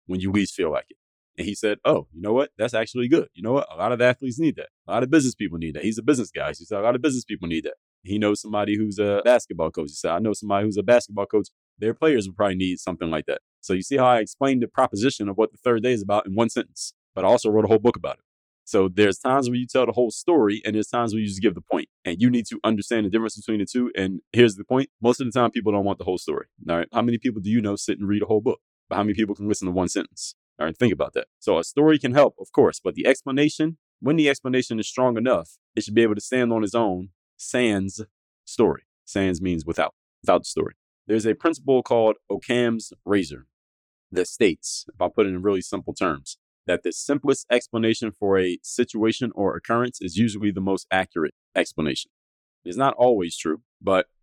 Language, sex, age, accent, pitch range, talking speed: English, male, 30-49, American, 100-120 Hz, 265 wpm